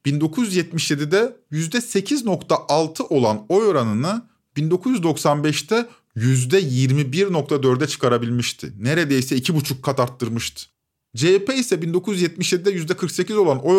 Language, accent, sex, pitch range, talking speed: Turkish, native, male, 135-190 Hz, 85 wpm